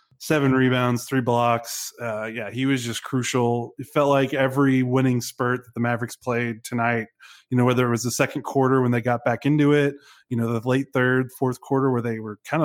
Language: English